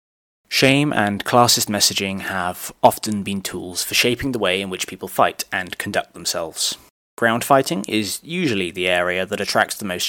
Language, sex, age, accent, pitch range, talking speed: English, male, 20-39, British, 105-135 Hz, 175 wpm